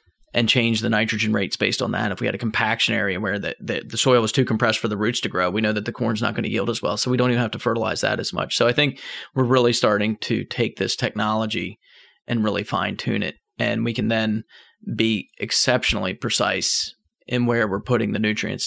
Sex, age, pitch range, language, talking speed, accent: male, 30-49, 110-125 Hz, English, 245 wpm, American